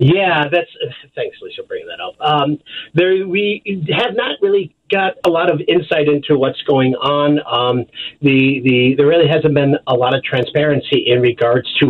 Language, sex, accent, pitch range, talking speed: English, male, American, 125-170 Hz, 185 wpm